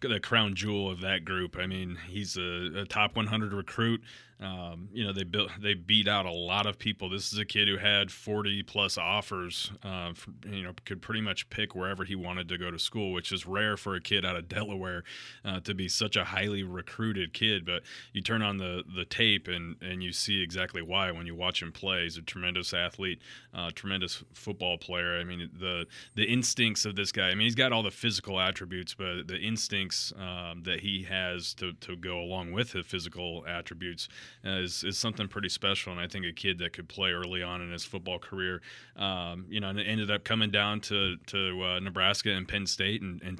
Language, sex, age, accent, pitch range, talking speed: English, male, 30-49, American, 90-105 Hz, 225 wpm